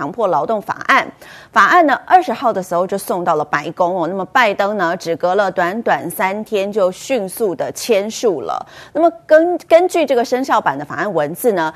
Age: 30-49